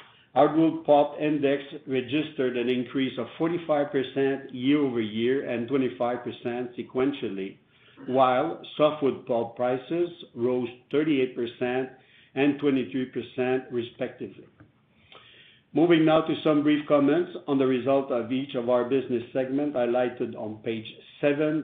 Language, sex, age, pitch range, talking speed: English, male, 60-79, 125-145 Hz, 115 wpm